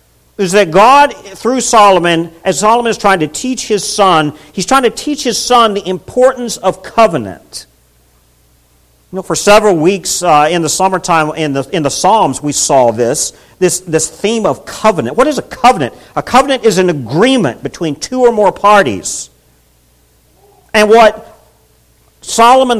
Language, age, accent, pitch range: English, 50-69, American, 145-210 Hz